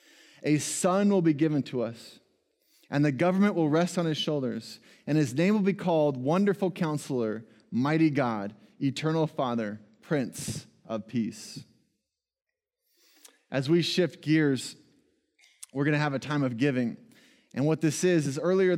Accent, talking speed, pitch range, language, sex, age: American, 155 wpm, 135-175 Hz, English, male, 20-39